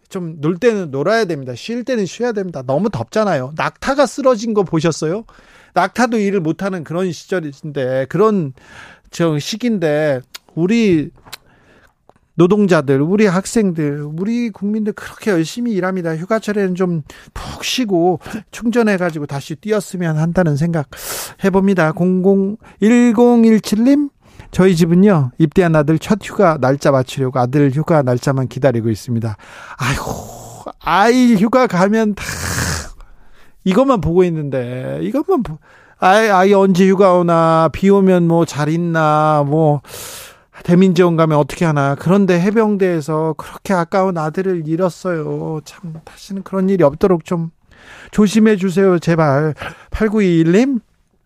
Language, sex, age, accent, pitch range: Korean, male, 40-59, native, 155-205 Hz